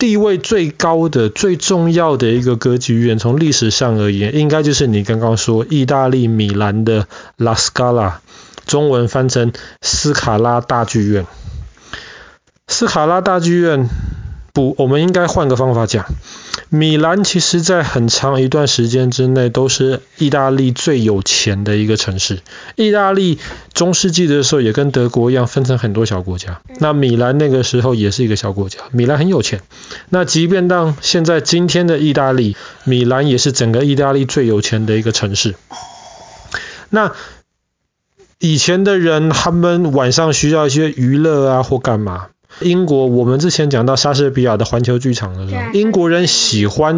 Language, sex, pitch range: Chinese, male, 115-155 Hz